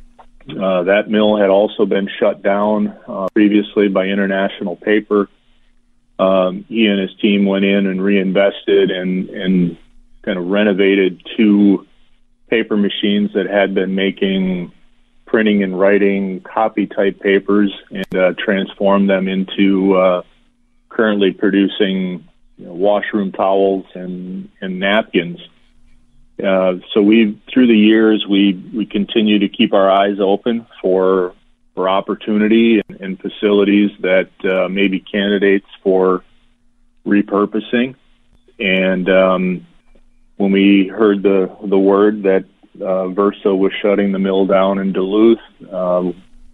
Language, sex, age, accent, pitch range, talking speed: English, male, 40-59, American, 95-105 Hz, 125 wpm